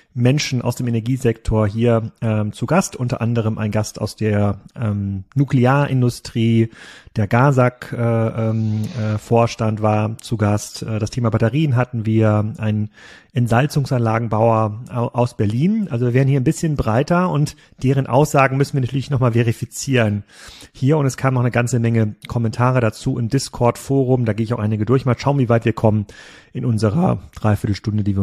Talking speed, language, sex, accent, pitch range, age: 160 wpm, German, male, German, 115-140 Hz, 30-49